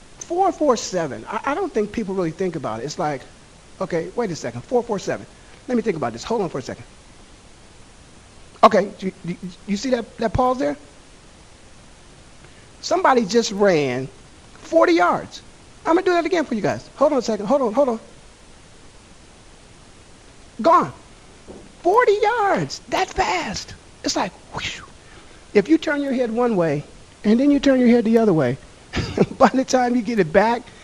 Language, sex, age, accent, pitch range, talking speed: English, male, 50-69, American, 160-240 Hz, 175 wpm